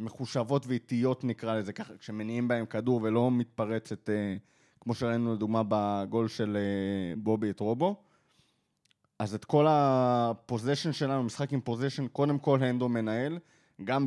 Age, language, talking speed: 20-39, Hebrew, 130 wpm